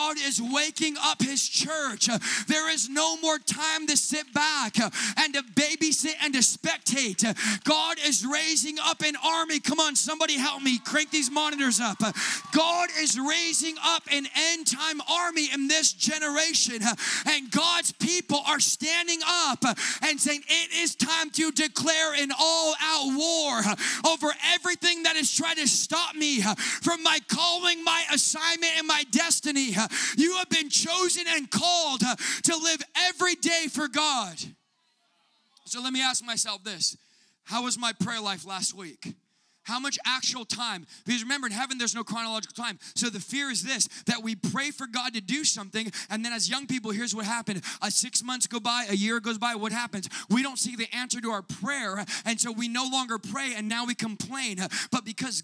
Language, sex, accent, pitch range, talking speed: English, male, American, 230-305 Hz, 180 wpm